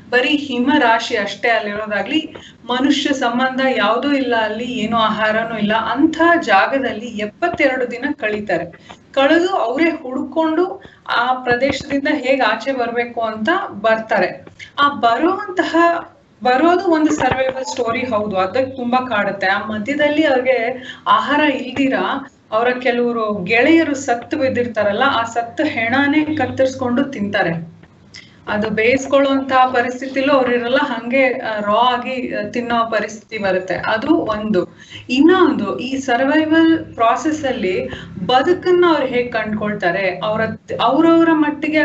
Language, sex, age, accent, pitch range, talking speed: Kannada, female, 30-49, native, 215-280 Hz, 110 wpm